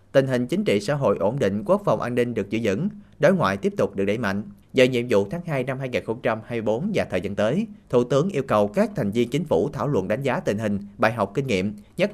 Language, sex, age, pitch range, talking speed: Vietnamese, male, 30-49, 105-140 Hz, 265 wpm